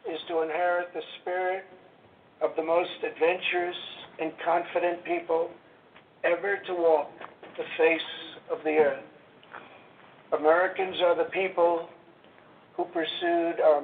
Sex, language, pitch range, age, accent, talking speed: male, English, 165-190 Hz, 60-79, American, 115 wpm